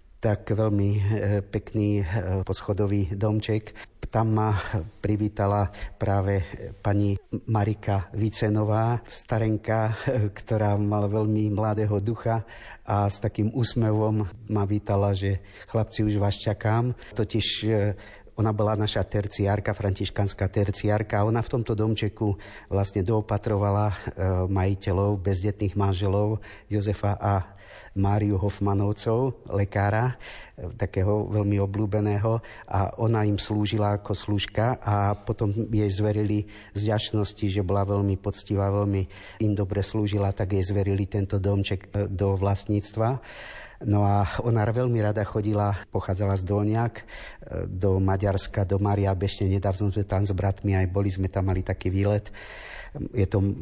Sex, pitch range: male, 100-110 Hz